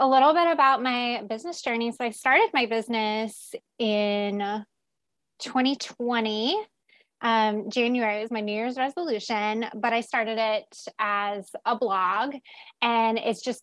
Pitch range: 210-240 Hz